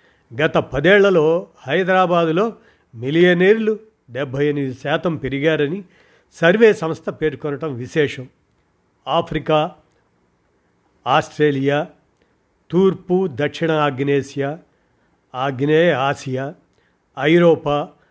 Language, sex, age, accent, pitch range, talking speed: Telugu, male, 50-69, native, 135-170 Hz, 65 wpm